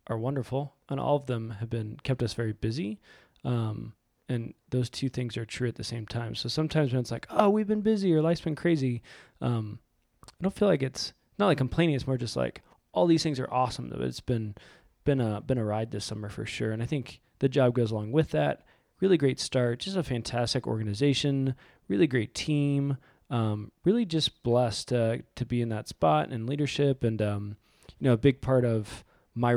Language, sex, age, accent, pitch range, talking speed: English, male, 20-39, American, 110-135 Hz, 210 wpm